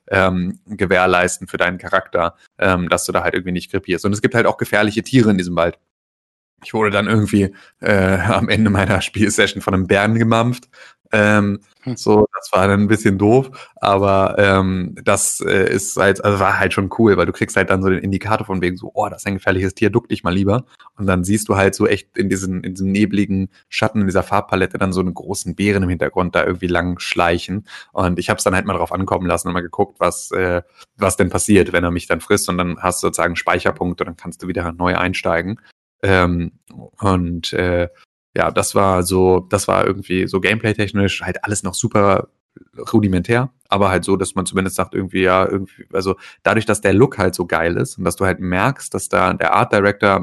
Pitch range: 90-110 Hz